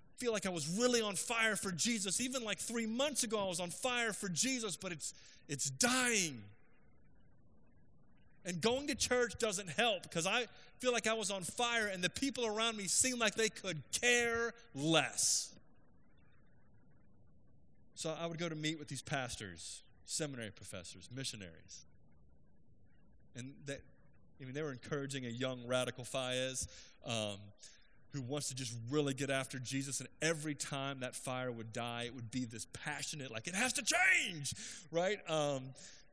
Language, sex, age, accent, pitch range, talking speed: English, male, 30-49, American, 125-190 Hz, 165 wpm